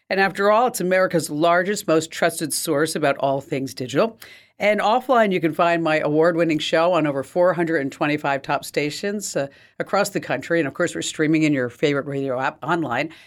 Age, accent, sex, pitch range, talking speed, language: 50-69, American, female, 145-185 Hz, 185 wpm, English